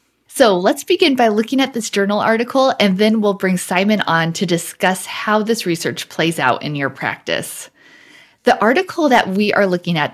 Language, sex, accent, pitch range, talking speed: English, female, American, 170-220 Hz, 190 wpm